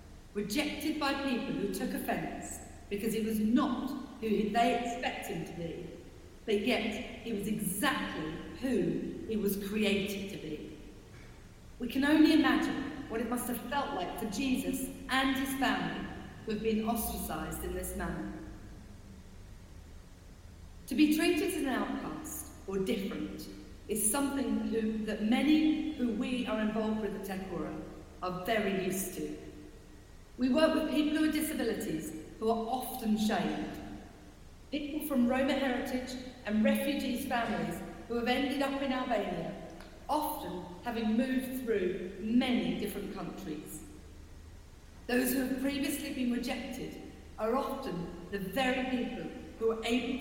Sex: female